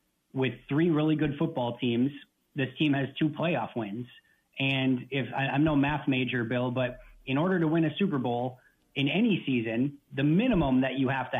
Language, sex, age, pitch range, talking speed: English, male, 30-49, 130-150 Hz, 195 wpm